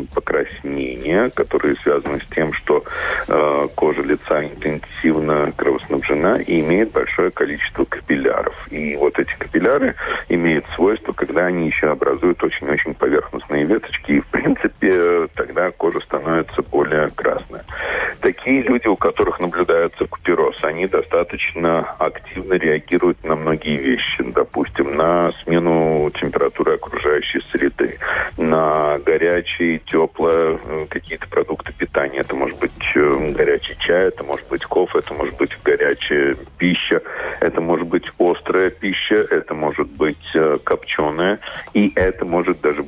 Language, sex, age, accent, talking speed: Russian, male, 40-59, native, 125 wpm